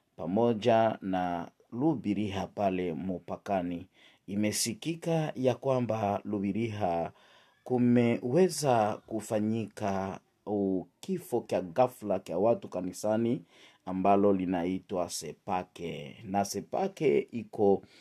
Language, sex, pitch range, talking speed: English, male, 95-125 Hz, 75 wpm